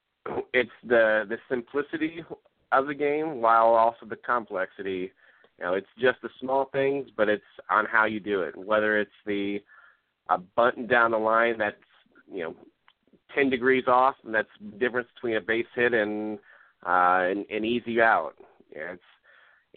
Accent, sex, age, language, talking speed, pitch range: American, male, 30-49, English, 165 wpm, 110-135 Hz